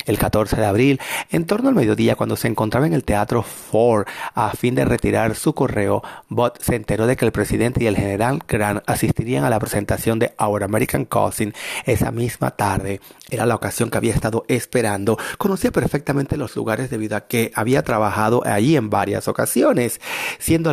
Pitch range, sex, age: 105-125 Hz, male, 30-49